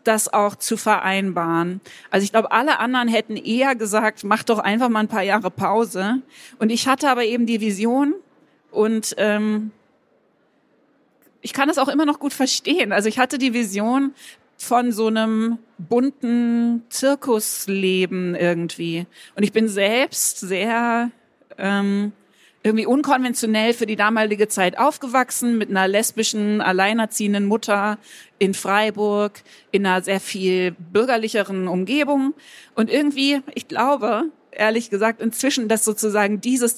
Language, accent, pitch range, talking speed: German, German, 200-255 Hz, 135 wpm